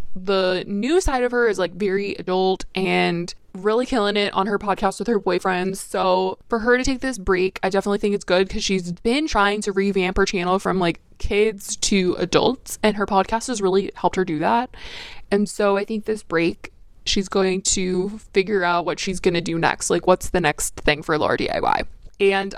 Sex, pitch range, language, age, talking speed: female, 190-230 Hz, English, 20-39, 210 wpm